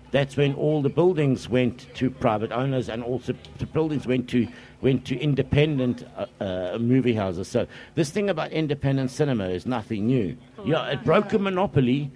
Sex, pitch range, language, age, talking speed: male, 120-140 Hz, English, 60-79, 180 wpm